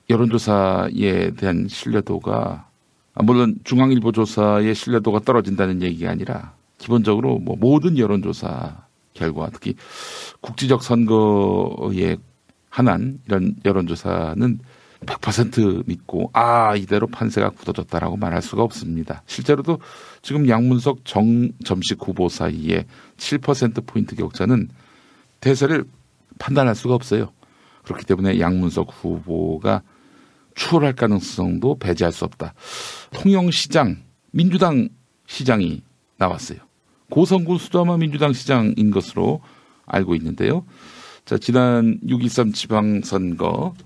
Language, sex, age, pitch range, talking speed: English, male, 50-69, 95-130 Hz, 90 wpm